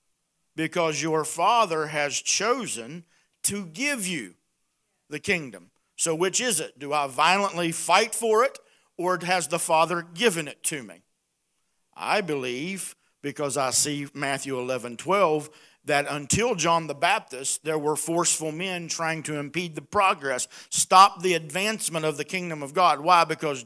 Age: 50-69